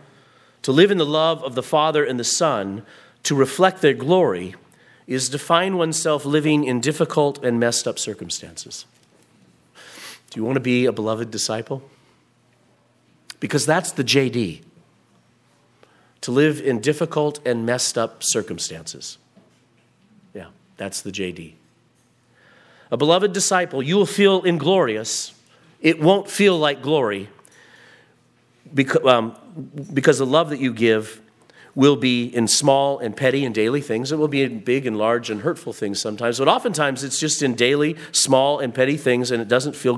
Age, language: 40-59, English